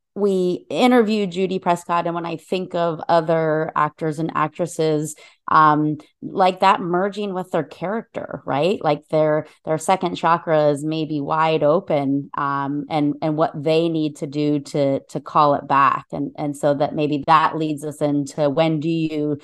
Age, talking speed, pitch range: 30-49, 165 wpm, 150-170 Hz